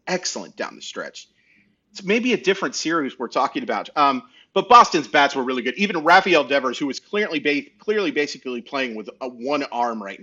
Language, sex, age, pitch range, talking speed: English, male, 30-49, 130-210 Hz, 200 wpm